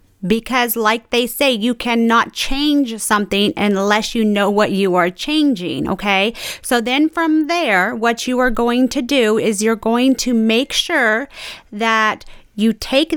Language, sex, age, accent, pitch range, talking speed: English, female, 30-49, American, 215-260 Hz, 160 wpm